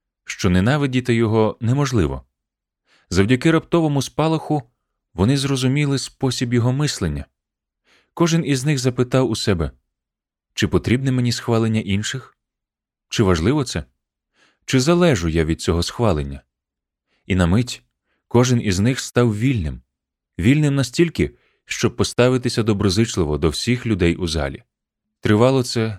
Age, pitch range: 30-49, 85-125 Hz